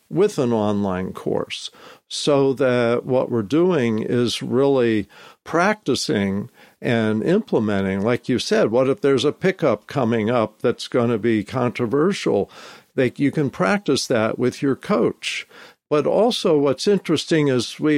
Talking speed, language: 140 wpm, English